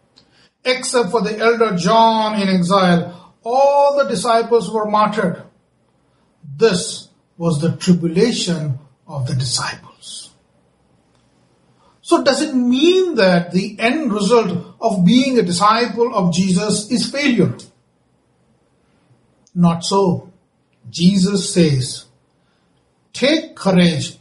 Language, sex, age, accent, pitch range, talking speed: English, male, 60-79, Indian, 170-240 Hz, 100 wpm